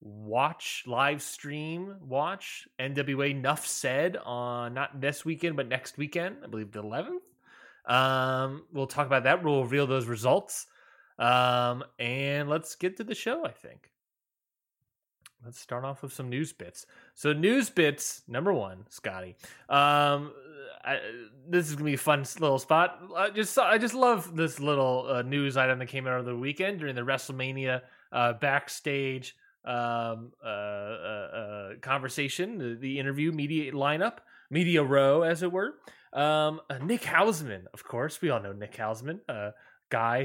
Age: 20-39